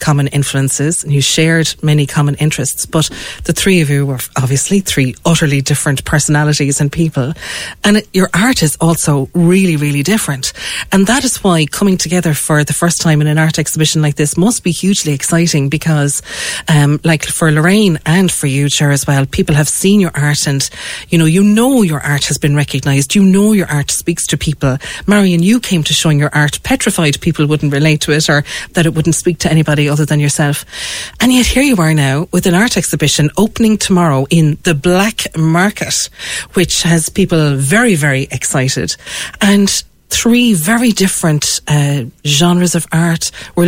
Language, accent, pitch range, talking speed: English, Irish, 150-185 Hz, 190 wpm